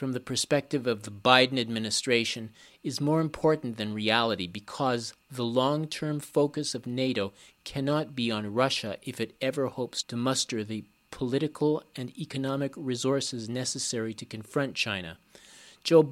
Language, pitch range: English, 115-145 Hz